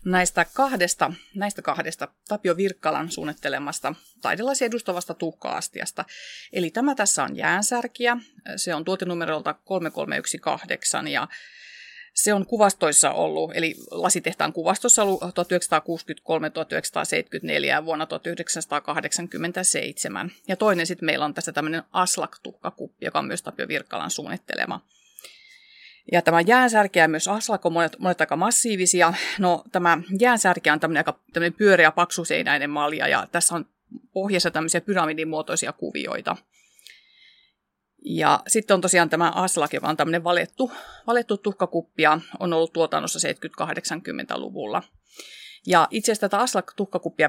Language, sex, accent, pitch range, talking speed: Finnish, female, native, 165-205 Hz, 115 wpm